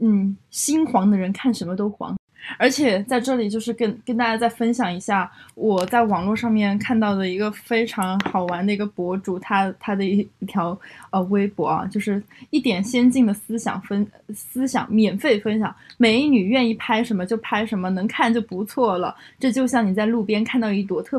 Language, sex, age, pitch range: Chinese, female, 20-39, 205-250 Hz